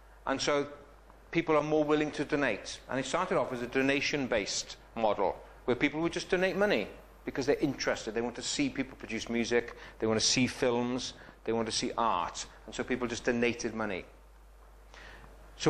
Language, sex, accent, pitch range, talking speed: English, male, British, 120-150 Hz, 190 wpm